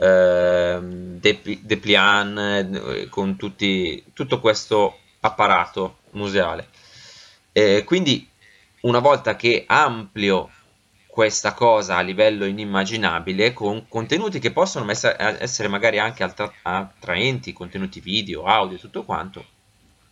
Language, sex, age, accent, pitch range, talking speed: Italian, male, 20-39, native, 95-115 Hz, 110 wpm